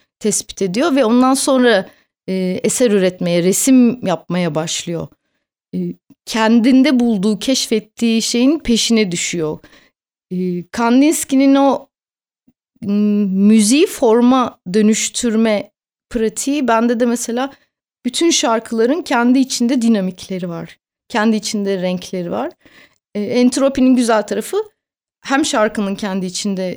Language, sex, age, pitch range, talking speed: Turkish, female, 30-49, 200-255 Hz, 105 wpm